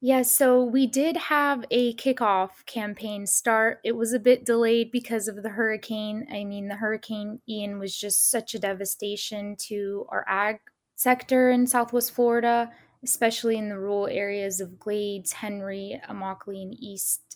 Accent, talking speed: American, 160 wpm